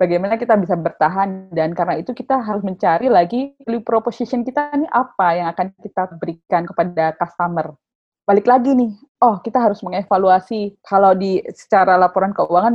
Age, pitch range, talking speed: 20-39, 190-245 Hz, 155 wpm